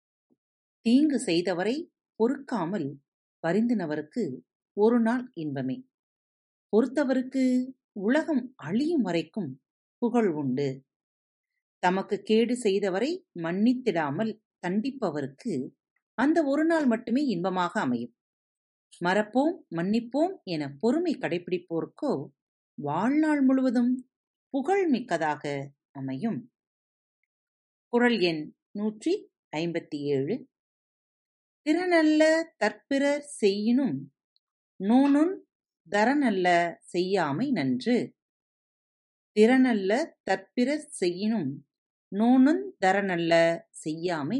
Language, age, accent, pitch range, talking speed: Tamil, 40-59, native, 170-265 Hz, 70 wpm